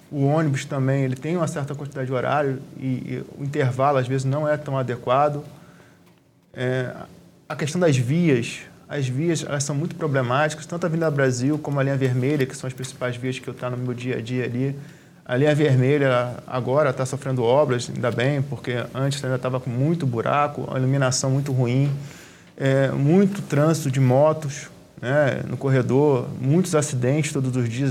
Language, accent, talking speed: Portuguese, Brazilian, 175 wpm